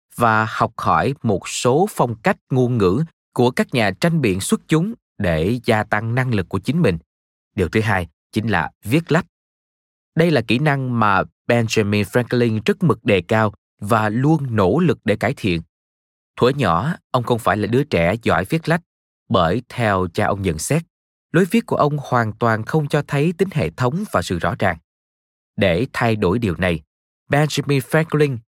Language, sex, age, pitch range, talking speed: Vietnamese, male, 20-39, 90-145 Hz, 185 wpm